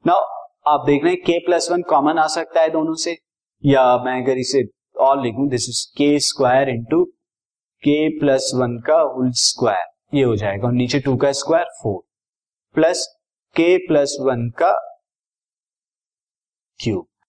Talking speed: 140 wpm